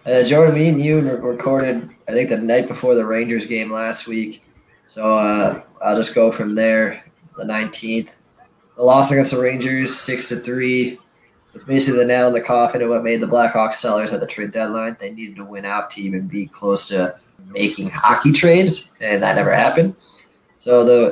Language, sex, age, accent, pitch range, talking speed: English, male, 20-39, American, 110-135 Hz, 195 wpm